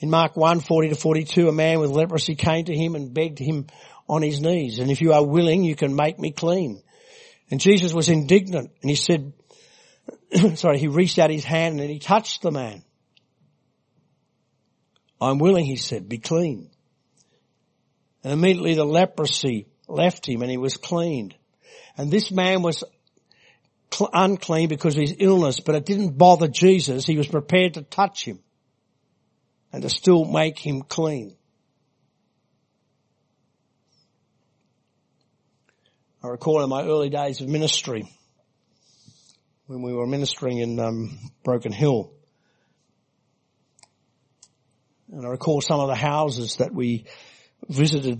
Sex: male